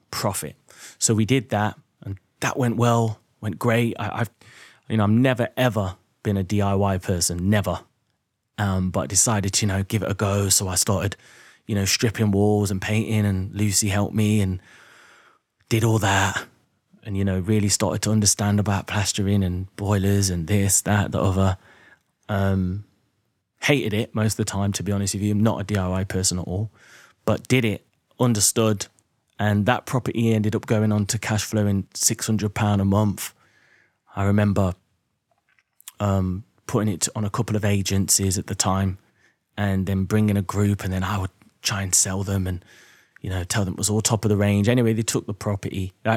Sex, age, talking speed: male, 20-39, 190 wpm